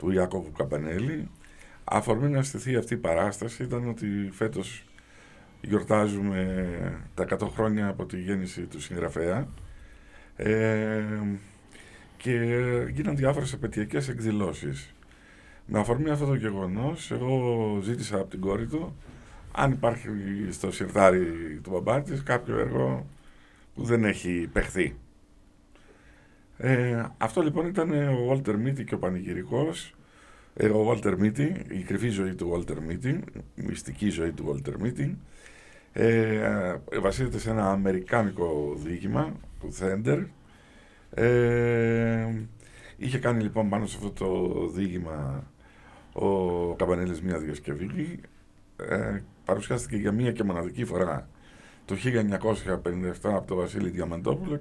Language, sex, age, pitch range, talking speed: Greek, male, 50-69, 95-120 Hz, 120 wpm